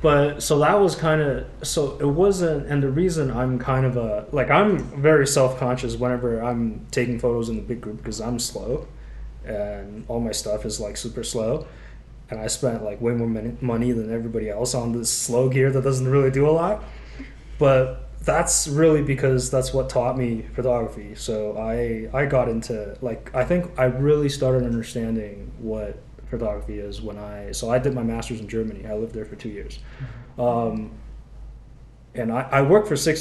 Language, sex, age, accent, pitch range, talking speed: English, male, 20-39, American, 110-135 Hz, 190 wpm